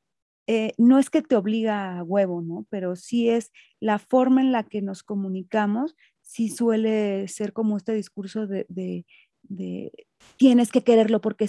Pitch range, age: 200-250 Hz, 30-49